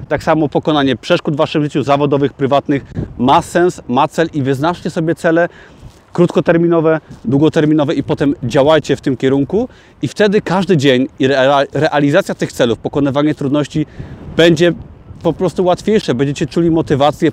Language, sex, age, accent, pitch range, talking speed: Polish, male, 30-49, native, 125-160 Hz, 145 wpm